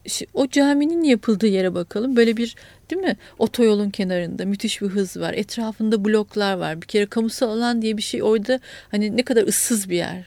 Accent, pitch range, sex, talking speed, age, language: native, 210-260 Hz, female, 185 wpm, 40-59, Turkish